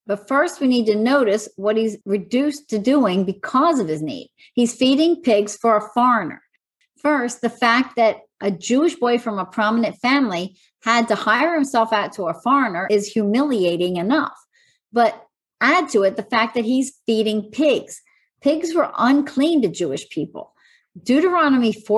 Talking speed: 165 wpm